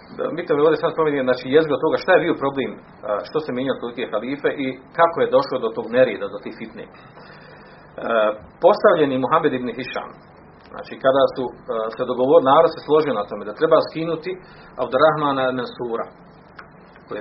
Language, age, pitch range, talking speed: Croatian, 40-59, 125-165 Hz, 175 wpm